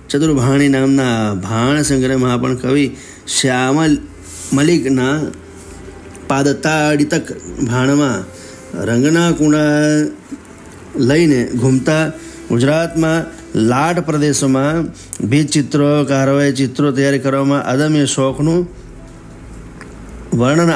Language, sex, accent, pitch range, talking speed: Gujarati, male, native, 120-150 Hz, 70 wpm